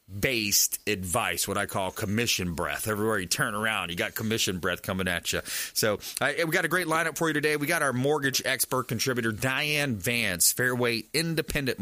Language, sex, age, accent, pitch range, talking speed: English, male, 30-49, American, 105-130 Hz, 195 wpm